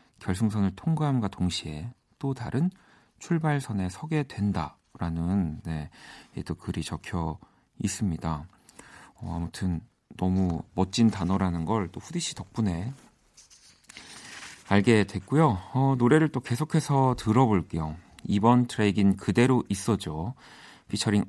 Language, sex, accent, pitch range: Korean, male, native, 90-130 Hz